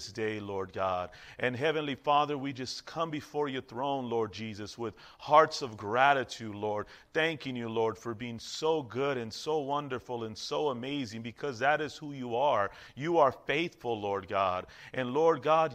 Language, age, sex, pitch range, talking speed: English, 40-59, male, 120-150 Hz, 175 wpm